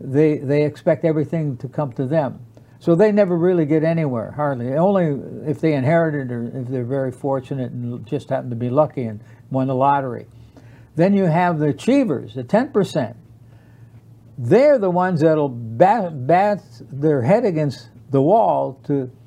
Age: 60-79